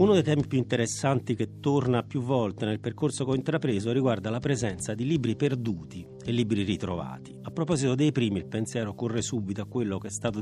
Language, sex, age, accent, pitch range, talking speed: Italian, male, 40-59, native, 105-145 Hz, 205 wpm